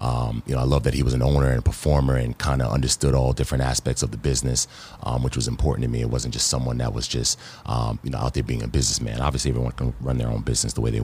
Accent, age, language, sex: American, 30-49, English, male